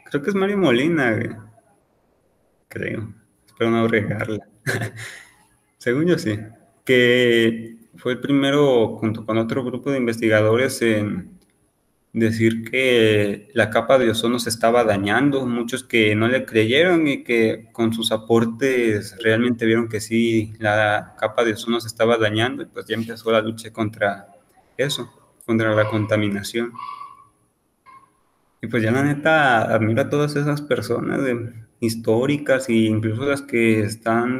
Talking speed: 140 wpm